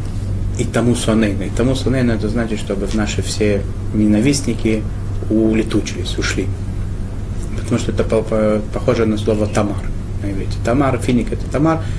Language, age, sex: Russian, 20-39, male